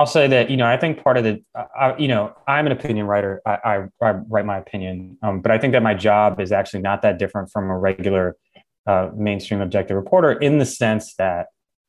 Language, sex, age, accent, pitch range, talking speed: English, male, 20-39, American, 95-110 Hz, 230 wpm